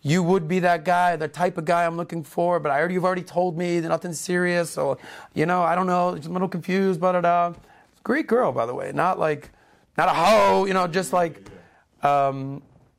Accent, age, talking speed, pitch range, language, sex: American, 30-49, 230 wpm, 135-175 Hz, English, male